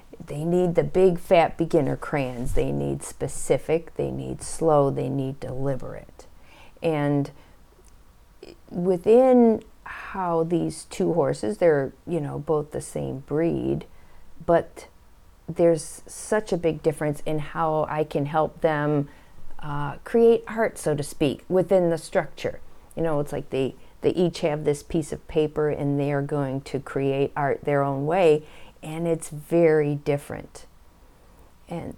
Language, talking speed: English, 145 wpm